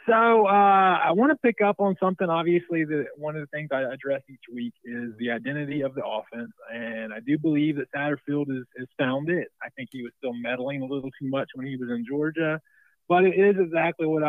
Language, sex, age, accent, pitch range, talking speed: English, male, 30-49, American, 120-160 Hz, 225 wpm